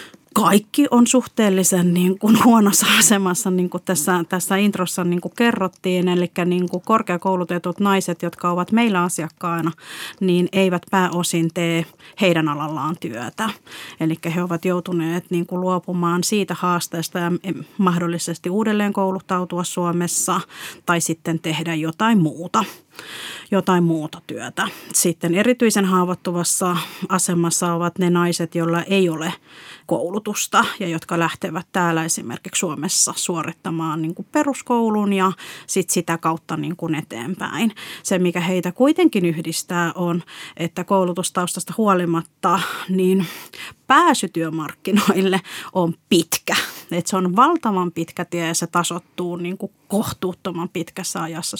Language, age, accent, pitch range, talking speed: Finnish, 30-49, native, 170-190 Hz, 125 wpm